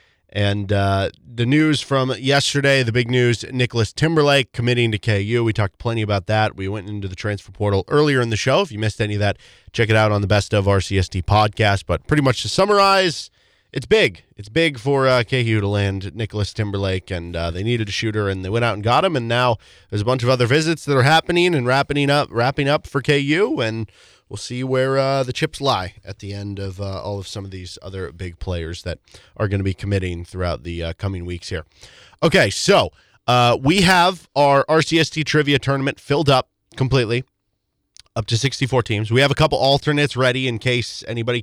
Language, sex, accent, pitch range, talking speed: English, male, American, 100-135 Hz, 215 wpm